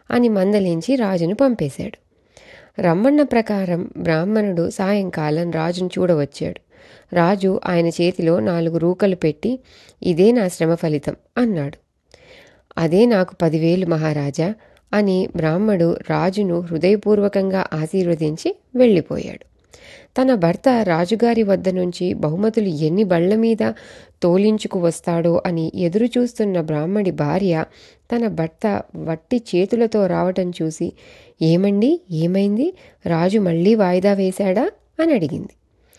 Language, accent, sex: Telugu, native, female